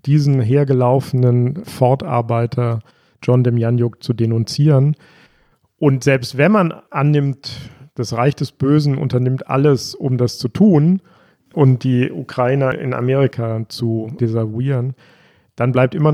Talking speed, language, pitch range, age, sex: 125 wpm, German, 120-140 Hz, 40-59, male